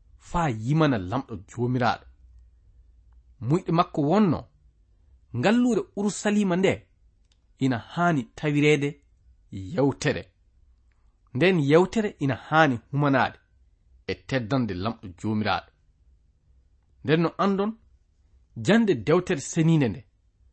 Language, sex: English, male